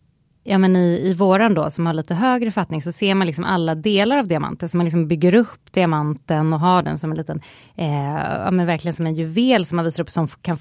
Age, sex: 30-49, female